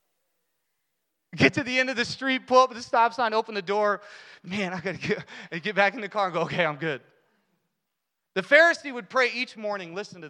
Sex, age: male, 30-49